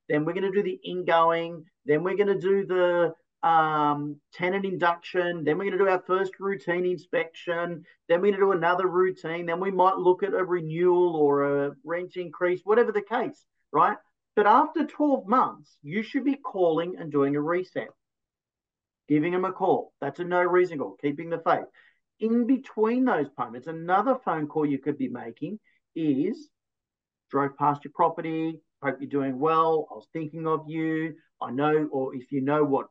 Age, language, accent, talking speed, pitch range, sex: 40-59, English, Australian, 180 wpm, 145-190 Hz, male